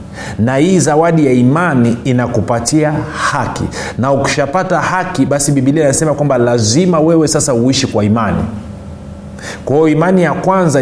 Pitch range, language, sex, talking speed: 110-145 Hz, Swahili, male, 135 wpm